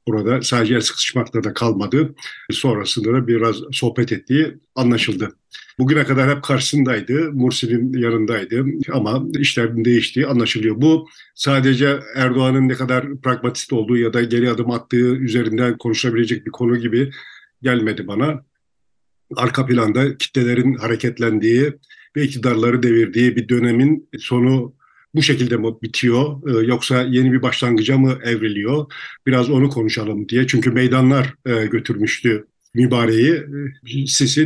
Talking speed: 120 wpm